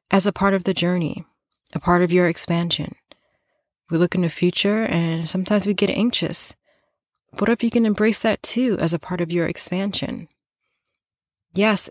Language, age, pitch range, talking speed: English, 30-49, 170-220 Hz, 175 wpm